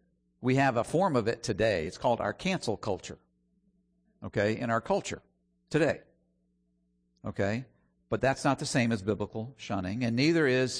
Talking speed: 160 wpm